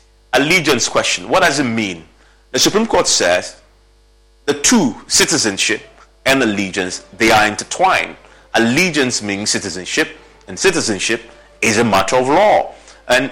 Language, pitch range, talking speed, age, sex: English, 105-130 Hz, 130 wpm, 30-49, male